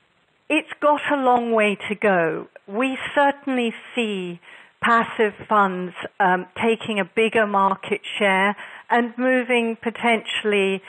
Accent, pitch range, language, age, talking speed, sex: British, 190-230 Hz, English, 50-69, 115 wpm, female